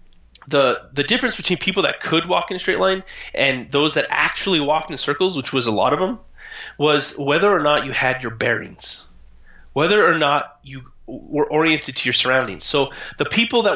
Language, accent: English, American